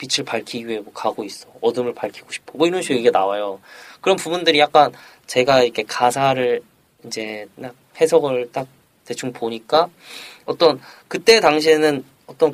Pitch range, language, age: 120-165 Hz, Korean, 20-39